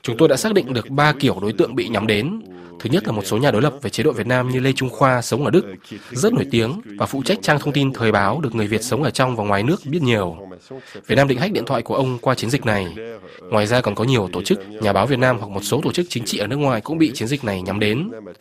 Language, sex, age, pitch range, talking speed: Vietnamese, male, 20-39, 105-135 Hz, 310 wpm